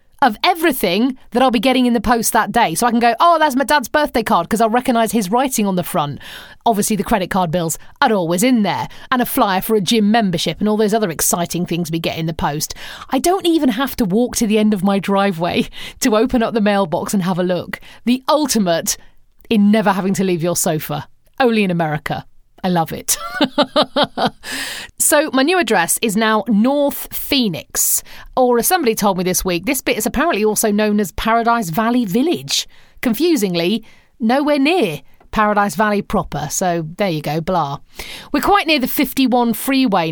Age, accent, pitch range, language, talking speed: 40-59, British, 185-250 Hz, English, 200 wpm